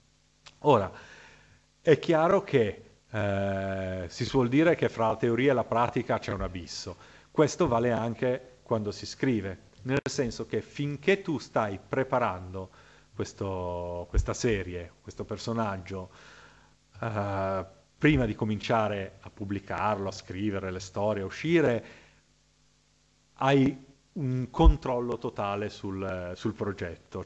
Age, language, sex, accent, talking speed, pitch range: 40-59, Italian, male, native, 120 wpm, 95-135 Hz